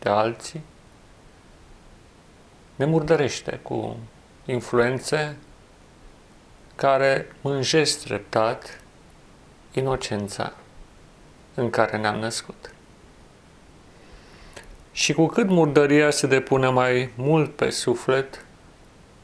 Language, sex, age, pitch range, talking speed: Romanian, male, 30-49, 115-145 Hz, 70 wpm